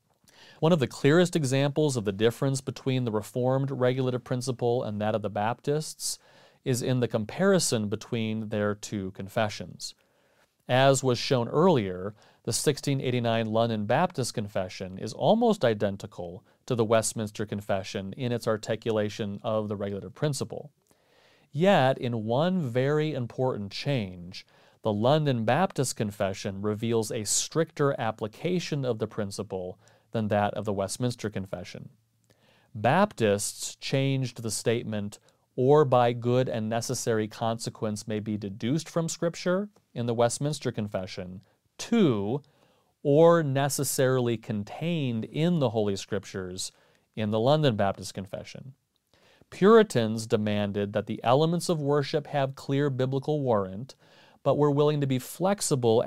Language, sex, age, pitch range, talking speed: English, male, 40-59, 110-140 Hz, 130 wpm